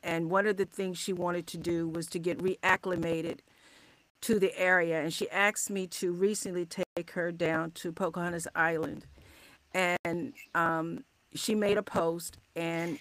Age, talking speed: 50-69, 160 wpm